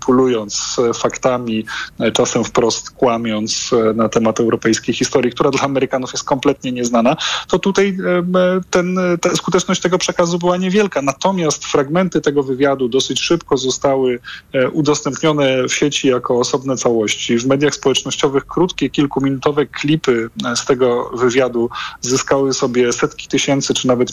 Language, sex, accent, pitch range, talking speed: Polish, male, native, 120-150 Hz, 125 wpm